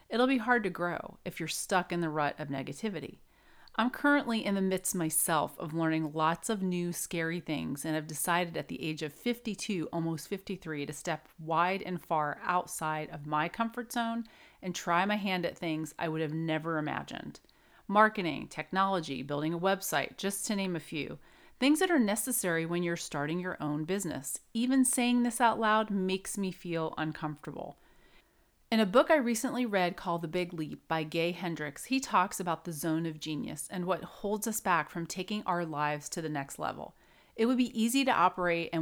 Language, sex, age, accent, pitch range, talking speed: English, female, 30-49, American, 155-200 Hz, 195 wpm